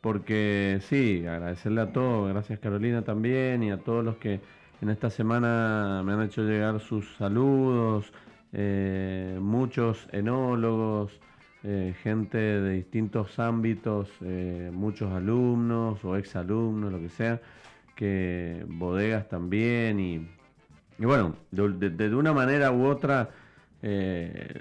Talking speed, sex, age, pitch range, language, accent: 125 wpm, male, 40-59, 100-115 Hz, Spanish, Argentinian